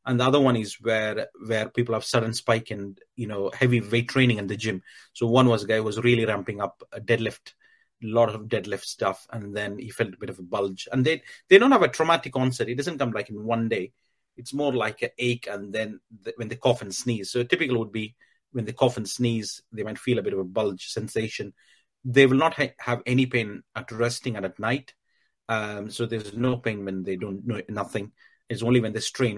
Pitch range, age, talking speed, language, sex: 110-130 Hz, 30-49, 245 wpm, English, male